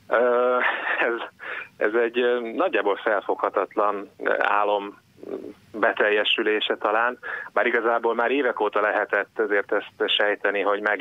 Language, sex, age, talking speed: Hungarian, male, 30-49, 105 wpm